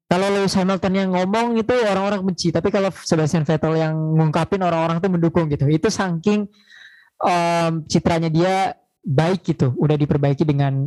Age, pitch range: 20-39, 145-170 Hz